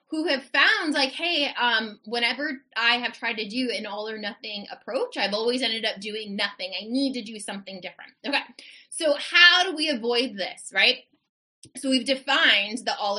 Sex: female